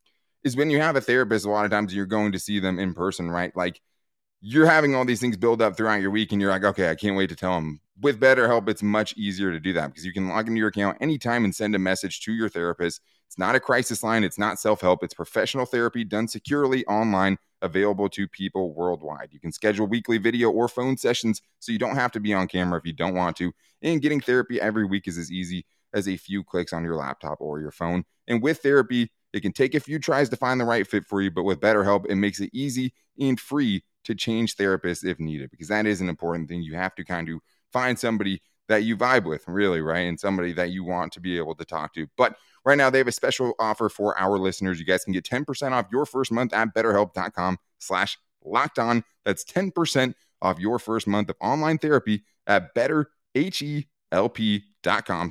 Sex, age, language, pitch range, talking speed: male, 20-39, English, 90-120 Hz, 235 wpm